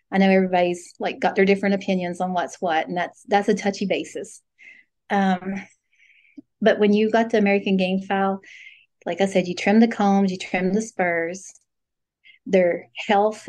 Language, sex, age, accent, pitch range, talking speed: English, female, 30-49, American, 190-225 Hz, 175 wpm